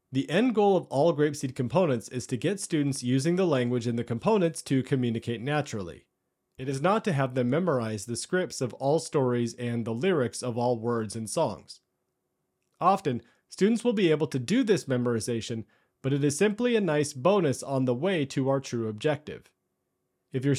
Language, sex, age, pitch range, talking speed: English, male, 40-59, 125-170 Hz, 190 wpm